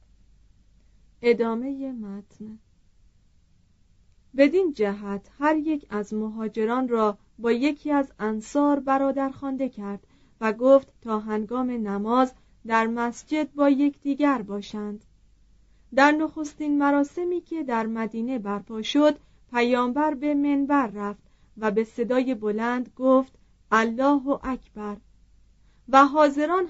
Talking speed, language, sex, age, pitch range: 105 wpm, Persian, female, 40-59, 215-285 Hz